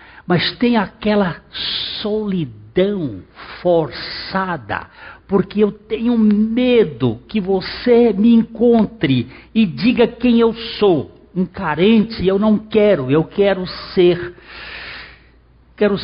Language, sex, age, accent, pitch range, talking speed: Portuguese, male, 60-79, Brazilian, 130-200 Hz, 100 wpm